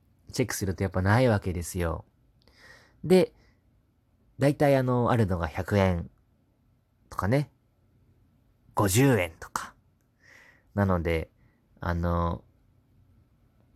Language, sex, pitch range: Japanese, male, 95-120 Hz